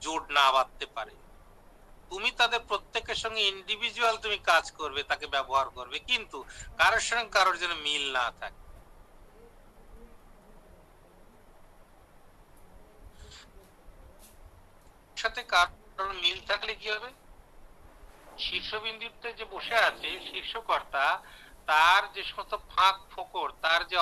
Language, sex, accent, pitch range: Hindi, male, native, 155-195 Hz